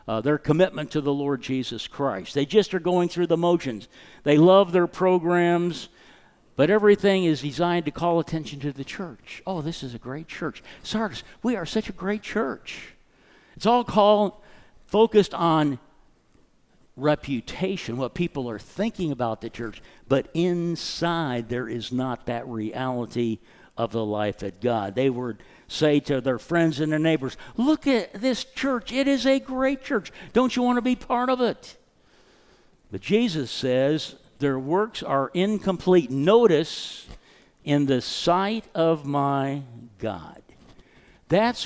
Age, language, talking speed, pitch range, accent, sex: 60-79, English, 155 wpm, 135-200 Hz, American, male